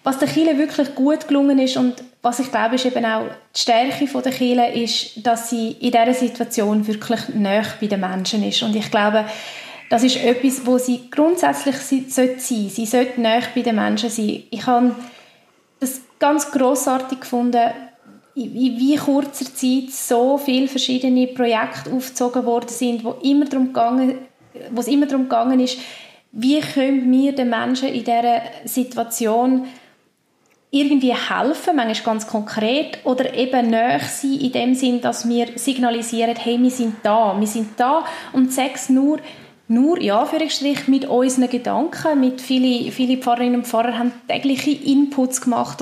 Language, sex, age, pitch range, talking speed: German, female, 20-39, 235-265 Hz, 160 wpm